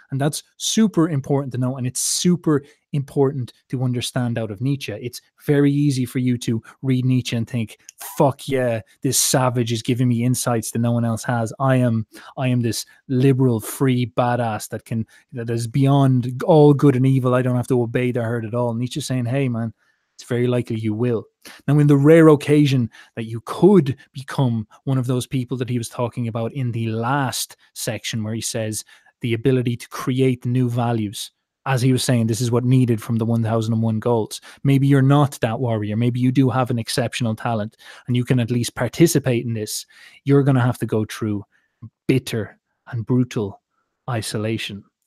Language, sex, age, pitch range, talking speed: English, male, 20-39, 115-135 Hz, 195 wpm